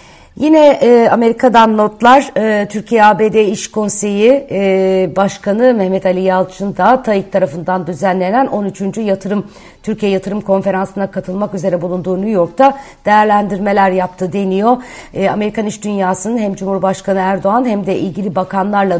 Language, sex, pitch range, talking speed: Turkish, female, 175-215 Hz, 135 wpm